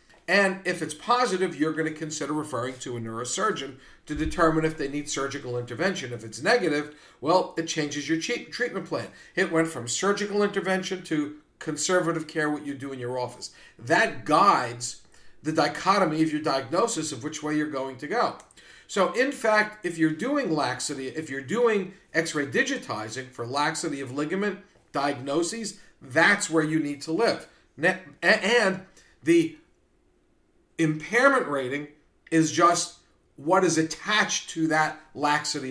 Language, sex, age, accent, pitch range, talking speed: English, male, 50-69, American, 140-190 Hz, 155 wpm